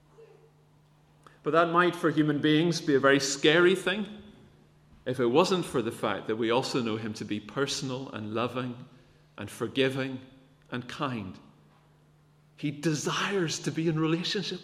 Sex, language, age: male, English, 40-59